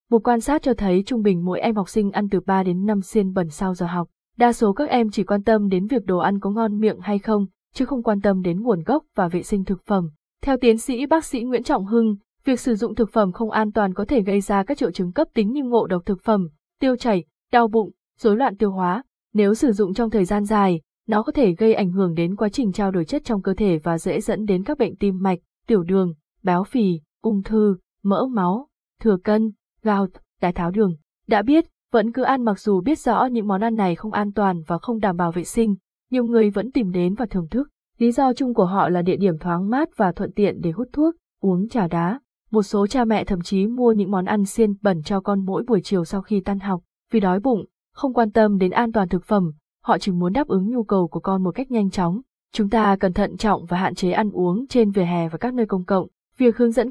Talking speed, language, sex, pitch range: 260 wpm, Vietnamese, female, 190-230 Hz